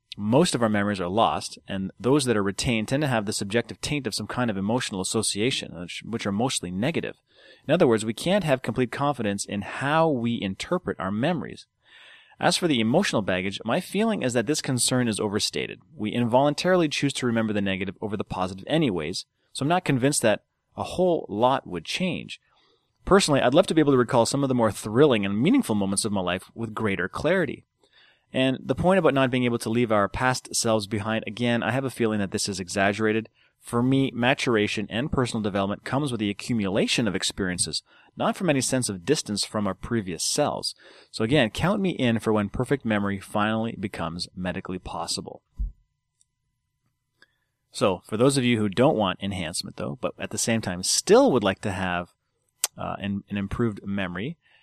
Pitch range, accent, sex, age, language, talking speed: 100-130 Hz, American, male, 30-49, English, 195 wpm